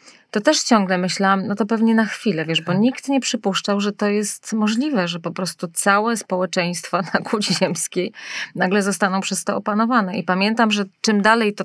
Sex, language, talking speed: female, Polish, 190 wpm